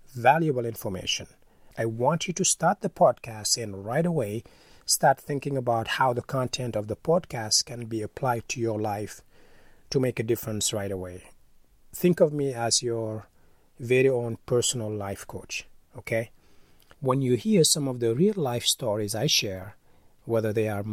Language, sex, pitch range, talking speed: English, male, 105-135 Hz, 165 wpm